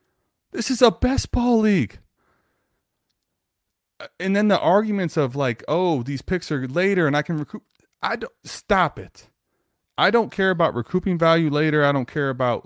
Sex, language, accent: male, English, American